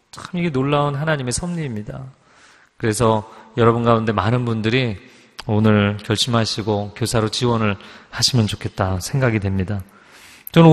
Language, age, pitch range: Korean, 40-59, 110-155 Hz